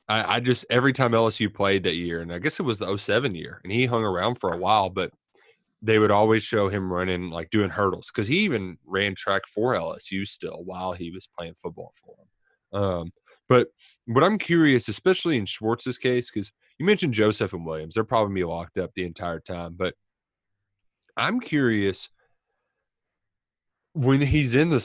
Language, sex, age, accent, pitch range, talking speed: English, male, 20-39, American, 95-120 Hz, 190 wpm